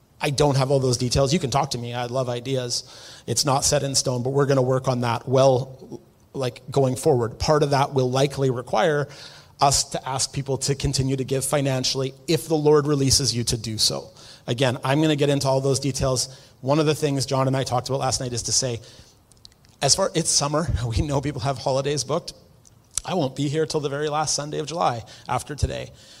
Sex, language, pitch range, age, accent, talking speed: male, English, 130-145 Hz, 30-49, American, 230 wpm